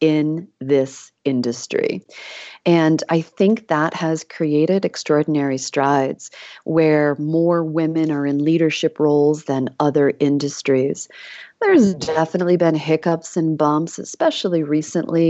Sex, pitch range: female, 150-185 Hz